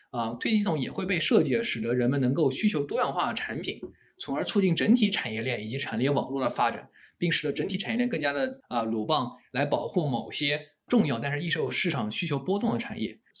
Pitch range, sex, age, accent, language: 125-190 Hz, male, 20-39, native, Chinese